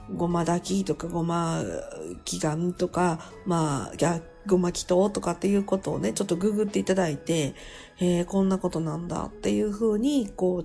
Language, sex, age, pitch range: Japanese, female, 50-69, 170-215 Hz